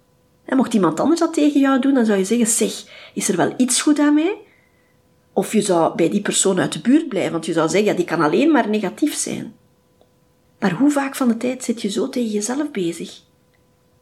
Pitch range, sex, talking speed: 205-300 Hz, female, 225 wpm